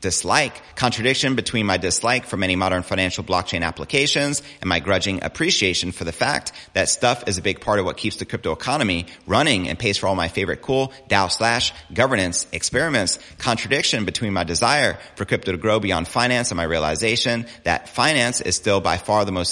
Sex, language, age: male, English, 30-49